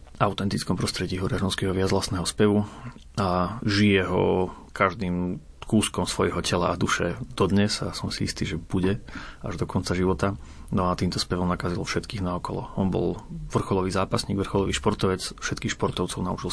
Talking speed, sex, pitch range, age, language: 155 wpm, male, 95-105 Hz, 30-49, Slovak